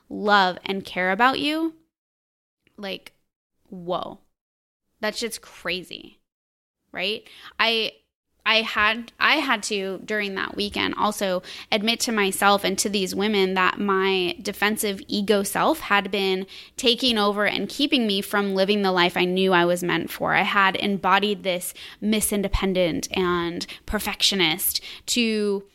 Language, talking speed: English, 135 wpm